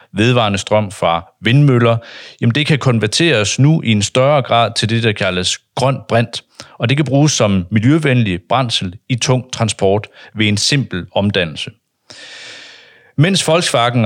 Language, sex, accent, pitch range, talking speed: Danish, male, native, 100-130 Hz, 150 wpm